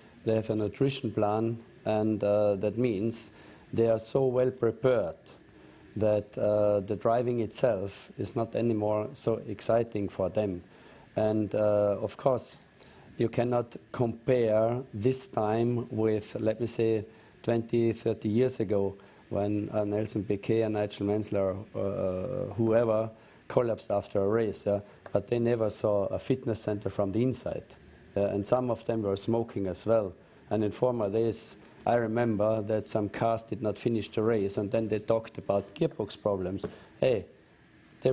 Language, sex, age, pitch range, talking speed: English, male, 50-69, 105-125 Hz, 155 wpm